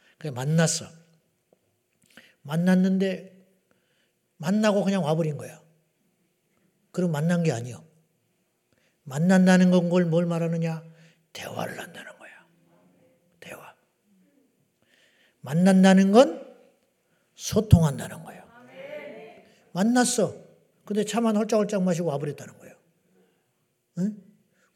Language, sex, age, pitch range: Korean, male, 40-59, 160-195 Hz